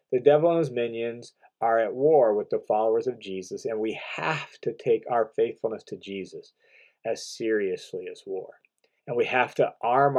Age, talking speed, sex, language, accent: 40-59, 185 wpm, male, English, American